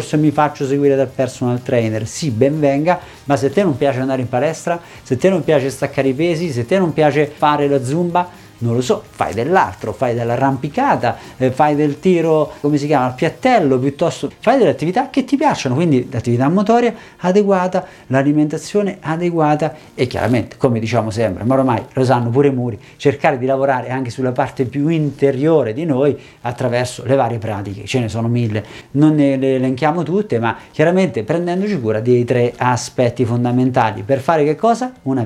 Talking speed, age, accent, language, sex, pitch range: 185 wpm, 50-69, native, Italian, male, 120-155 Hz